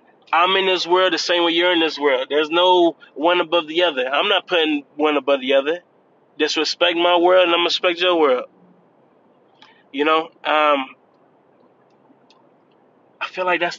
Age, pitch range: 20-39, 155-190 Hz